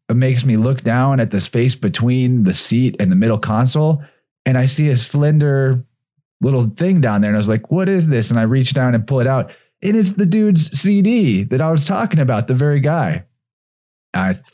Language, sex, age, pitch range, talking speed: English, male, 30-49, 110-150 Hz, 220 wpm